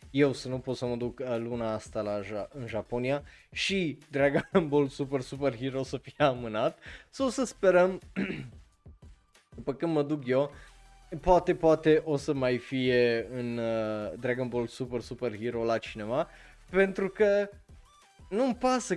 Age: 20-39